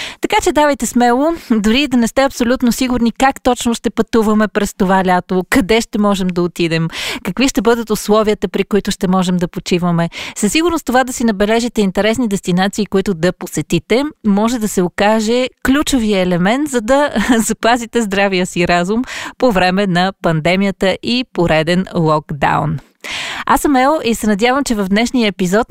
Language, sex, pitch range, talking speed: Bulgarian, female, 185-240 Hz, 170 wpm